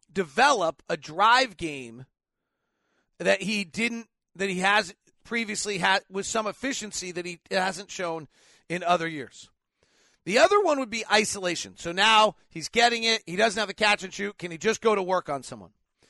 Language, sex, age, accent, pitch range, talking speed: English, male, 40-59, American, 180-235 Hz, 180 wpm